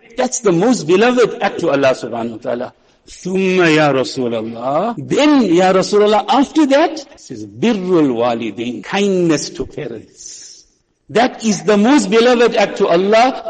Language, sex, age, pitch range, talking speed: English, male, 60-79, 170-255 Hz, 140 wpm